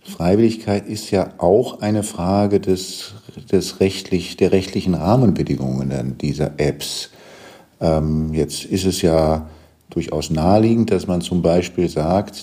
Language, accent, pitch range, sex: German, German, 80-100 Hz, male